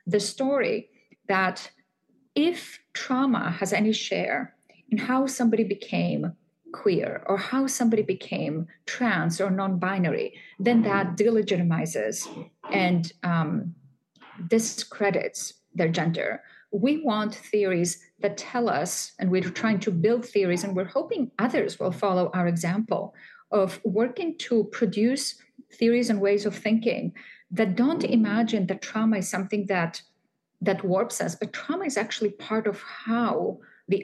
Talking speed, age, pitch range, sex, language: 135 wpm, 30-49, 190-235 Hz, female, English